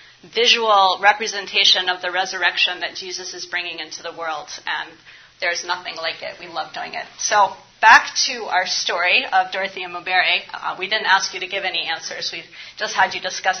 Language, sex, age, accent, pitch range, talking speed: English, female, 30-49, American, 185-230 Hz, 190 wpm